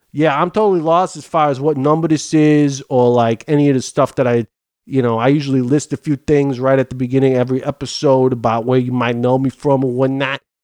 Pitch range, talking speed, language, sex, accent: 130-180 Hz, 245 wpm, English, male, American